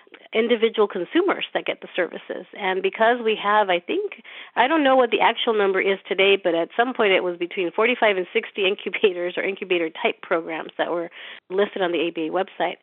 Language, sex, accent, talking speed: English, female, American, 195 wpm